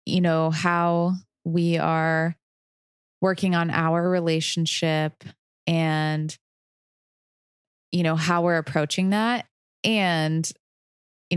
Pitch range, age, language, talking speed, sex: 150-175 Hz, 20-39, English, 95 wpm, female